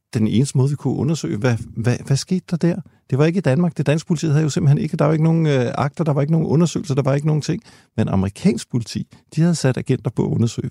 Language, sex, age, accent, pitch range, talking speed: Danish, male, 50-69, native, 110-145 Hz, 285 wpm